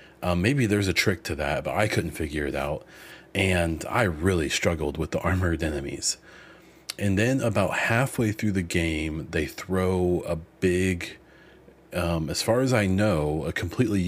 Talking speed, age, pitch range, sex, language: 170 wpm, 30-49, 85-100 Hz, male, English